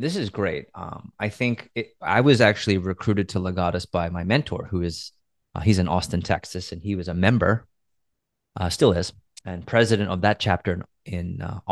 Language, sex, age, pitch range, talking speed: English, male, 30-49, 90-105 Hz, 195 wpm